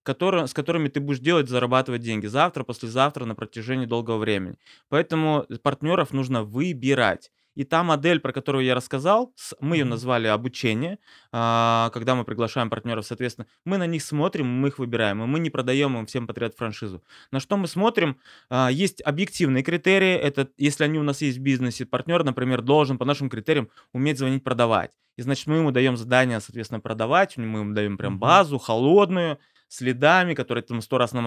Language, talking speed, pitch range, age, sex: Russian, 185 wpm, 130-175 Hz, 20-39, male